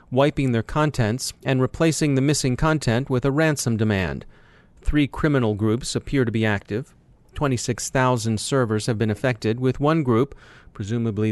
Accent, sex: American, male